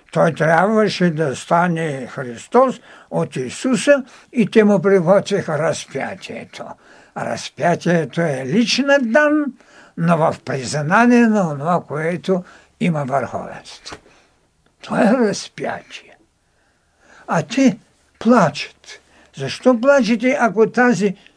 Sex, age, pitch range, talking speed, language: male, 60-79, 165-235 Hz, 95 wpm, Bulgarian